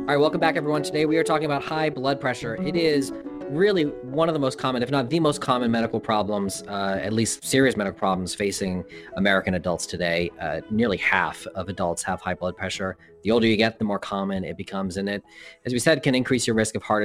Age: 30-49